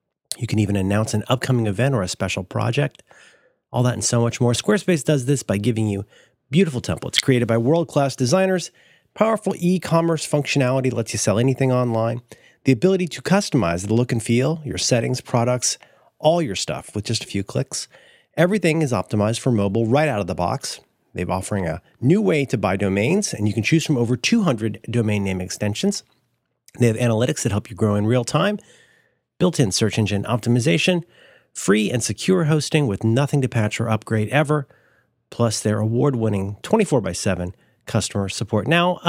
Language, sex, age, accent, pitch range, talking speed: English, male, 30-49, American, 110-170 Hz, 185 wpm